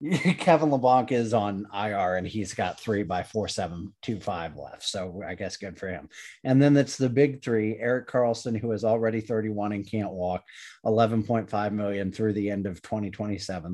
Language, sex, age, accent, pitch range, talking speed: English, male, 30-49, American, 105-125 Hz, 190 wpm